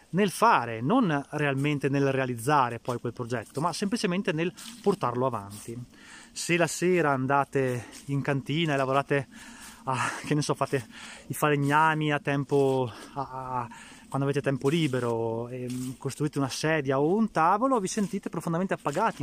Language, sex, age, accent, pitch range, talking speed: Italian, male, 20-39, native, 130-170 Hz, 135 wpm